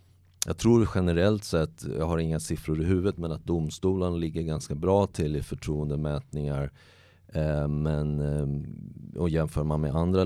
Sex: male